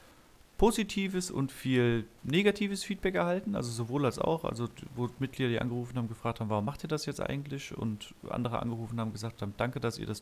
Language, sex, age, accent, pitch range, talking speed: German, male, 30-49, German, 105-125 Hz, 200 wpm